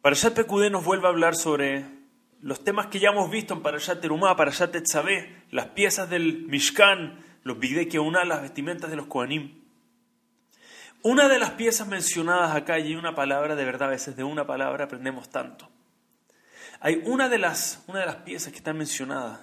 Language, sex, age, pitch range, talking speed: Spanish, male, 30-49, 155-220 Hz, 185 wpm